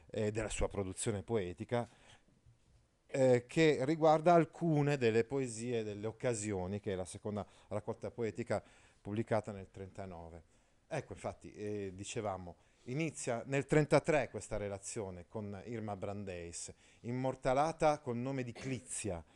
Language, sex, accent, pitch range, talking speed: Italian, male, native, 100-135 Hz, 120 wpm